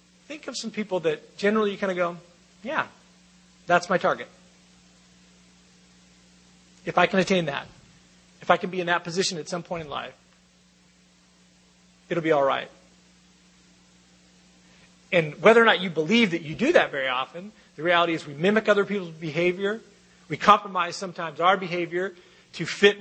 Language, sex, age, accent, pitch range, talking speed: English, male, 40-59, American, 135-185 Hz, 160 wpm